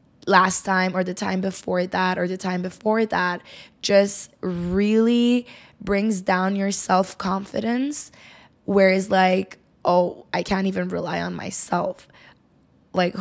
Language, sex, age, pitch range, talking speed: English, female, 20-39, 185-205 Hz, 125 wpm